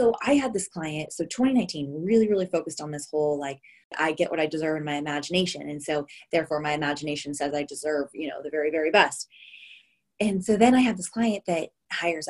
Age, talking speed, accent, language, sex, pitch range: 20-39, 220 wpm, American, English, female, 155-210 Hz